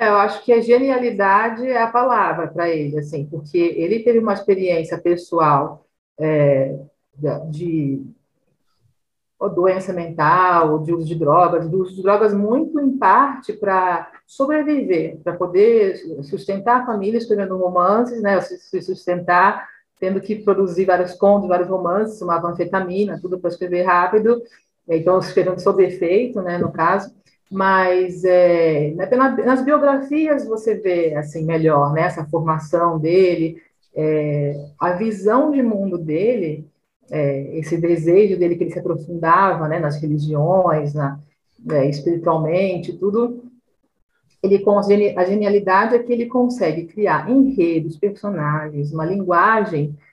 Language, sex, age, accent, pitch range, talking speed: Portuguese, female, 40-59, Brazilian, 165-210 Hz, 125 wpm